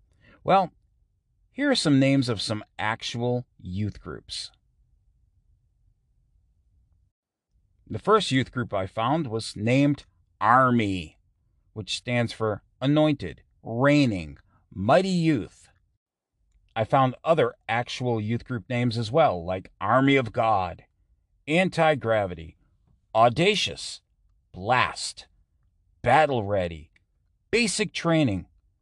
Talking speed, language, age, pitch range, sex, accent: 95 wpm, English, 40-59, 90-135 Hz, male, American